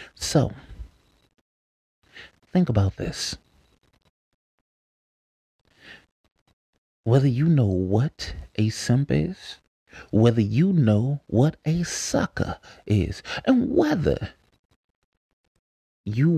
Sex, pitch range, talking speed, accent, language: male, 100-135 Hz, 75 wpm, American, English